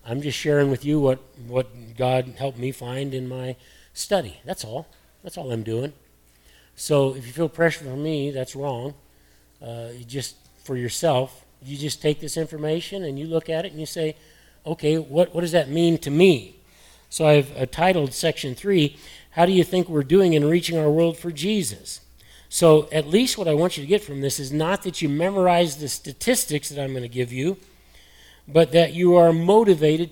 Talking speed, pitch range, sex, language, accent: 205 wpm, 125-165 Hz, male, English, American